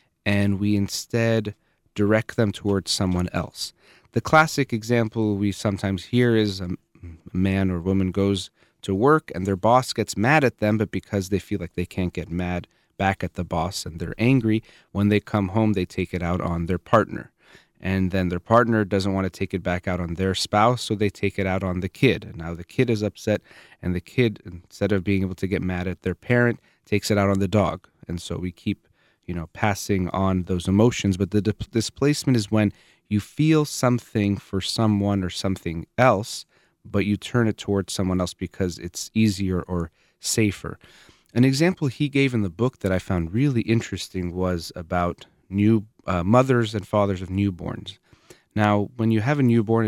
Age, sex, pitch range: 30-49, male, 90-110 Hz